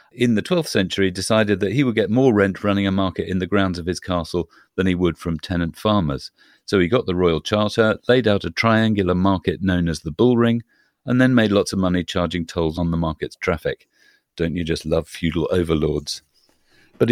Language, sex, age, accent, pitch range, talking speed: English, male, 40-59, British, 90-120 Hz, 210 wpm